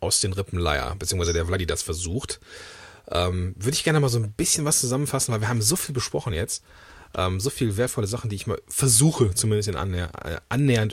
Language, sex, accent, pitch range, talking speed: German, male, German, 100-135 Hz, 190 wpm